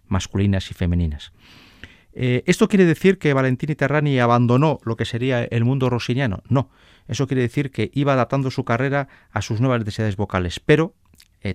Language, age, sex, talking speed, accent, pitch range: Spanish, 40-59, male, 170 wpm, Spanish, 95-125 Hz